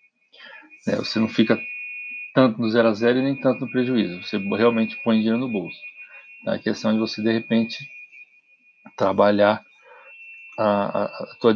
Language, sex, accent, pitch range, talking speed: Portuguese, male, Brazilian, 115-150 Hz, 160 wpm